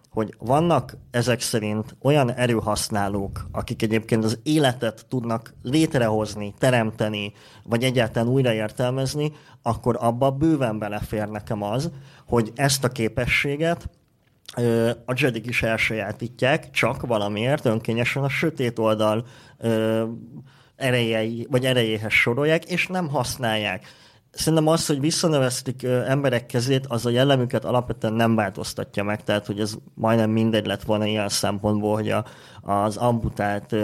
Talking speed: 120 wpm